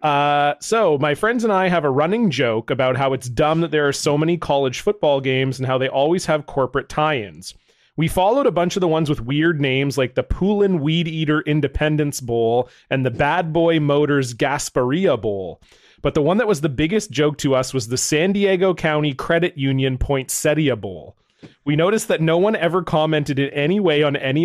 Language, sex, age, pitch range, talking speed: English, male, 30-49, 140-170 Hz, 205 wpm